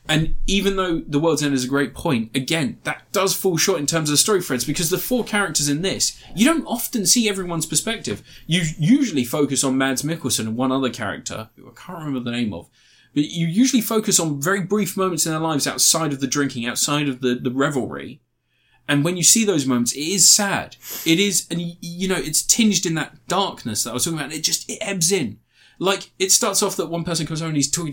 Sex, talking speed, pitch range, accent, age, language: male, 235 wpm, 140-195 Hz, British, 20-39, English